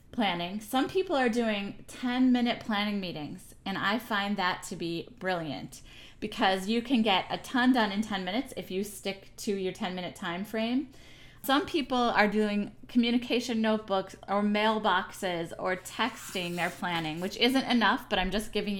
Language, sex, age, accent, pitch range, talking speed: English, female, 20-39, American, 185-230 Hz, 165 wpm